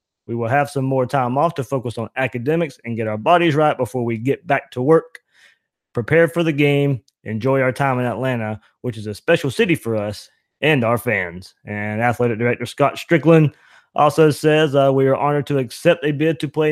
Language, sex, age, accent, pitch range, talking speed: English, male, 20-39, American, 115-145 Hz, 210 wpm